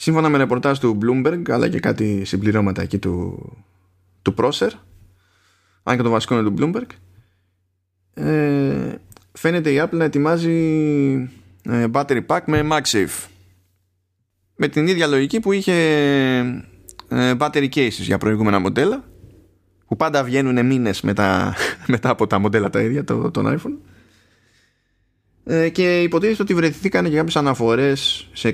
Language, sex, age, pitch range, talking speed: Greek, male, 20-39, 95-135 Hz, 130 wpm